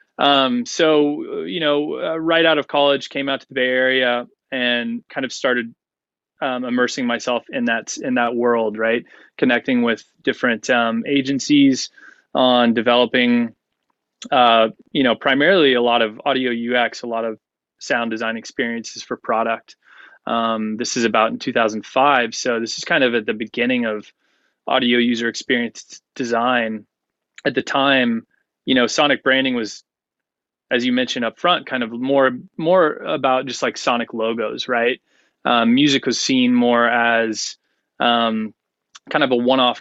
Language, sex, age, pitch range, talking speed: English, male, 20-39, 115-135 Hz, 160 wpm